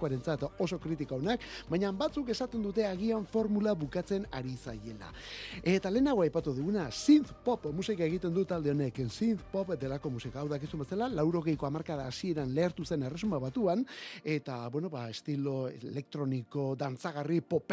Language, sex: Spanish, male